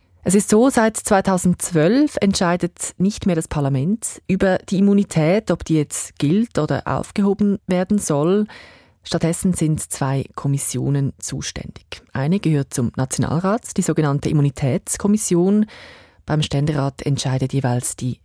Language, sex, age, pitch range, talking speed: German, female, 30-49, 140-195 Hz, 125 wpm